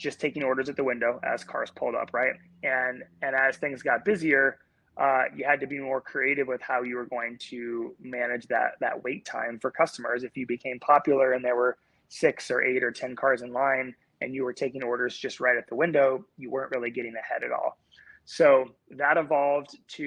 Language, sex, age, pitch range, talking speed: English, male, 20-39, 125-140 Hz, 220 wpm